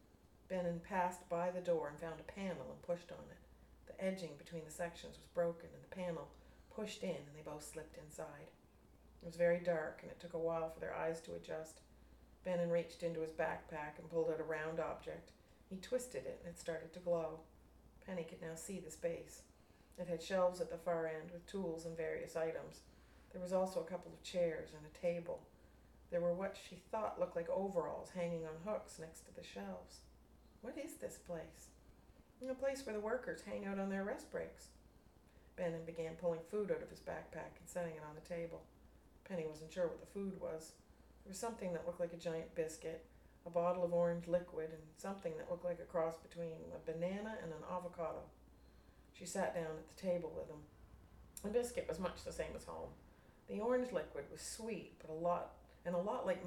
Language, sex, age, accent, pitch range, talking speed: English, female, 40-59, American, 160-185 Hz, 210 wpm